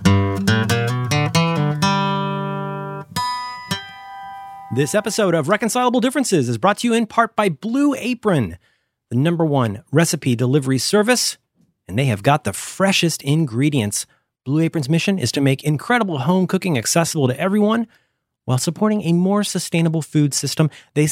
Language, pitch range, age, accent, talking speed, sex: English, 130-195 Hz, 30-49, American, 135 wpm, male